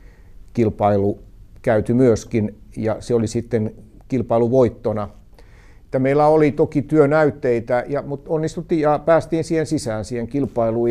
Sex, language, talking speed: male, Finnish, 115 wpm